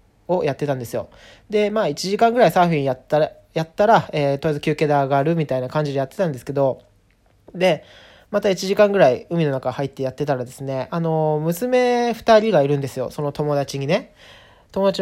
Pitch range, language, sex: 140-190 Hz, Japanese, male